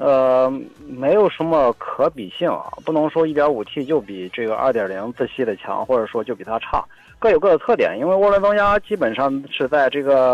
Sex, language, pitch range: male, Chinese, 130-170 Hz